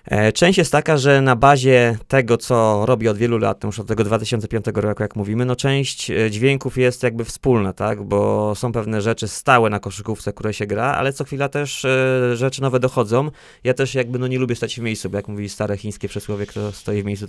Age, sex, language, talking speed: 20-39, male, Polish, 215 wpm